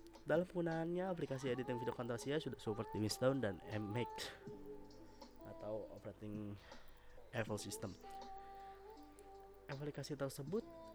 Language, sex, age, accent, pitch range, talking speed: Indonesian, male, 20-39, native, 110-145 Hz, 95 wpm